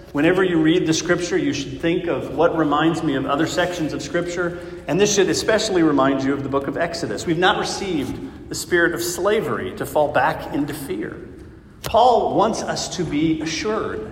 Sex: male